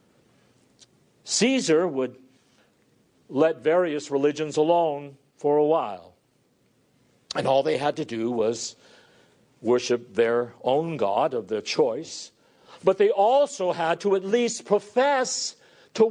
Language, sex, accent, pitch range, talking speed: English, male, American, 145-225 Hz, 120 wpm